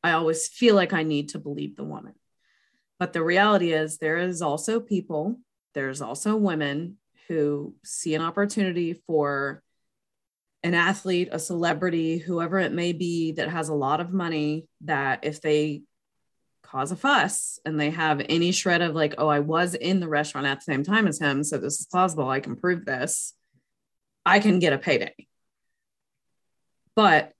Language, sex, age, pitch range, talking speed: English, female, 20-39, 155-195 Hz, 175 wpm